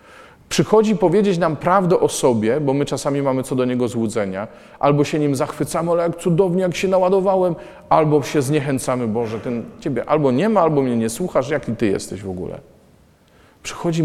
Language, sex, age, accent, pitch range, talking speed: Polish, male, 40-59, native, 120-155 Hz, 185 wpm